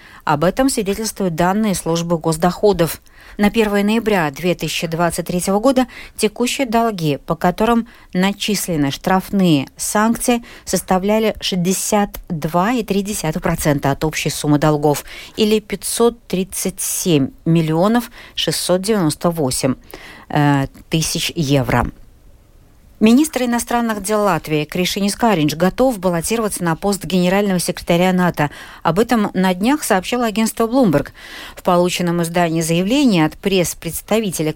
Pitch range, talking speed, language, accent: 165-215 Hz, 95 wpm, Russian, native